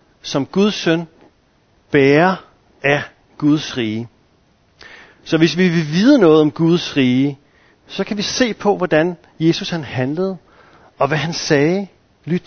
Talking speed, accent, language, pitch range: 145 wpm, native, Danish, 135-195 Hz